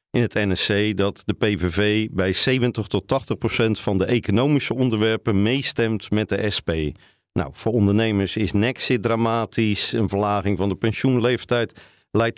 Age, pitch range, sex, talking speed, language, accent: 50-69, 105-130 Hz, male, 150 wpm, Dutch, Dutch